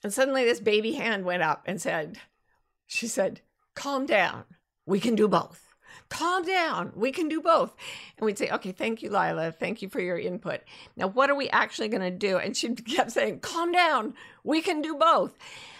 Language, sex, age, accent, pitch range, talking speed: English, female, 50-69, American, 195-265 Hz, 200 wpm